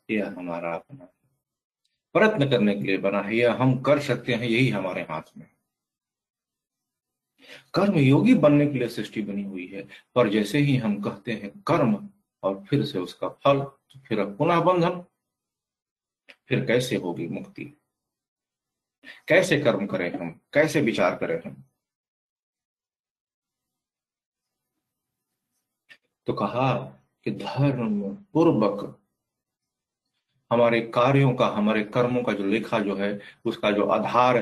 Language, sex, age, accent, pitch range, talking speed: Hindi, male, 50-69, native, 100-135 Hz, 130 wpm